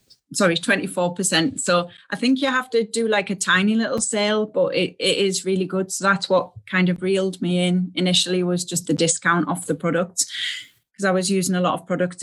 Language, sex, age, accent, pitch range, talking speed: English, female, 30-49, British, 175-200 Hz, 215 wpm